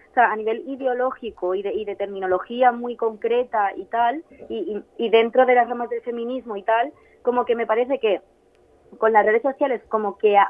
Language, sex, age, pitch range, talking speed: Spanish, female, 20-39, 205-240 Hz, 210 wpm